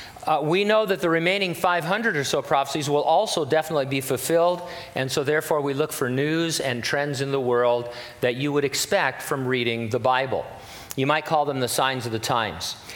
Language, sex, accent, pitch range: English, male, American, 125-160 Hz